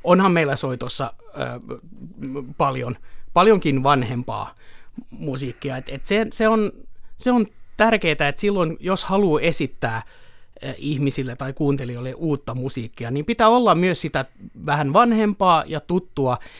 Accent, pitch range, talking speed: native, 125-160 Hz, 130 wpm